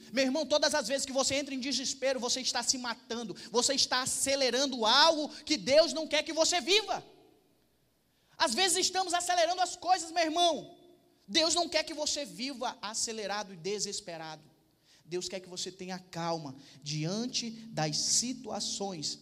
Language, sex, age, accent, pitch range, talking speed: Portuguese, male, 20-39, Brazilian, 175-260 Hz, 160 wpm